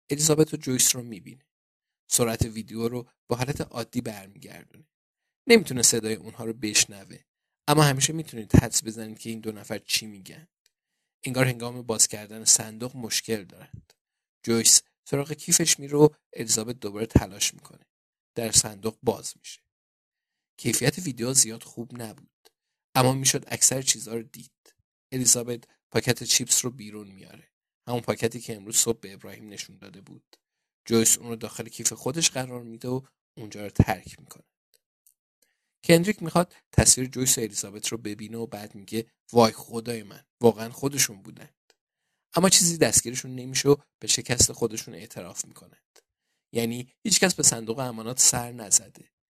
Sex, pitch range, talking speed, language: male, 110-135 Hz, 145 wpm, Persian